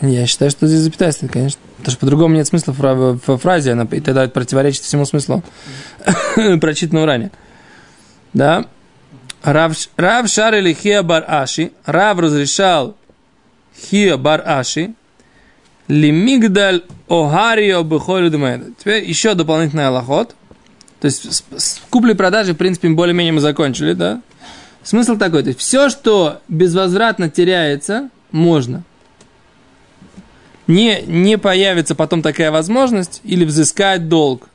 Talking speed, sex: 115 wpm, male